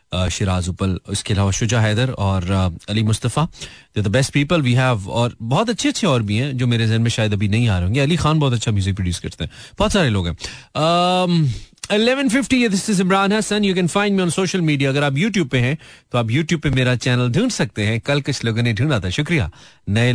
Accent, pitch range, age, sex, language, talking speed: native, 110-185 Hz, 40-59, male, Hindi, 210 wpm